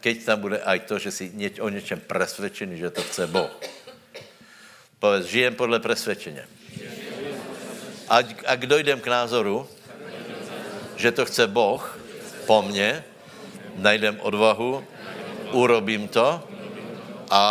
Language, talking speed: Slovak, 115 wpm